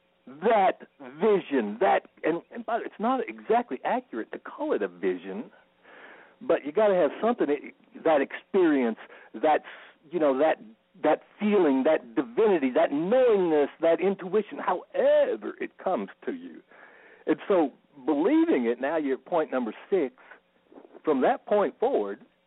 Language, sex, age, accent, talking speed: English, male, 60-79, American, 145 wpm